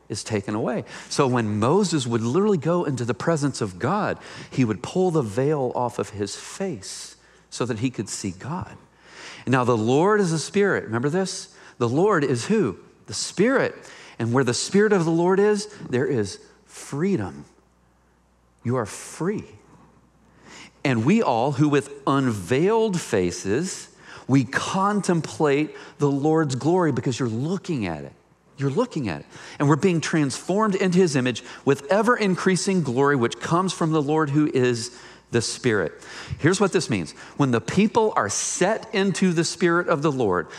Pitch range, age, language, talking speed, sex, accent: 120-185 Hz, 40-59, English, 165 wpm, male, American